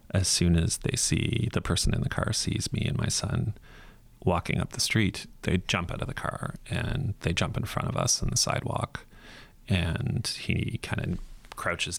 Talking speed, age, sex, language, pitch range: 200 wpm, 30-49, male, English, 95-125 Hz